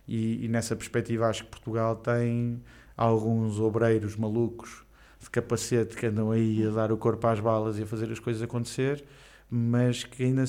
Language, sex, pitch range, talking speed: Portuguese, male, 115-145 Hz, 175 wpm